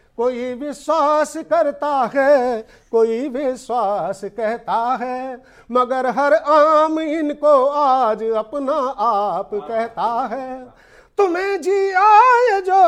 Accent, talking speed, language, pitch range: Indian, 105 wpm, English, 220-310 Hz